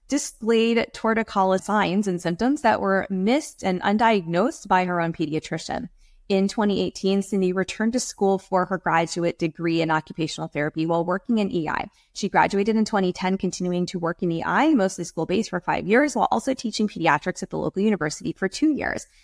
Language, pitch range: English, 175-220 Hz